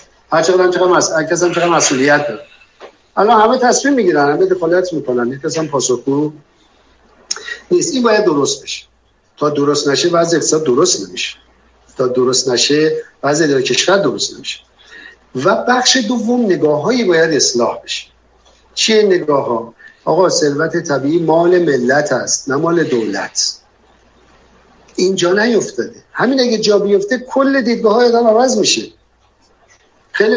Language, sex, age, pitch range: Persian, male, 50-69, 170-240 Hz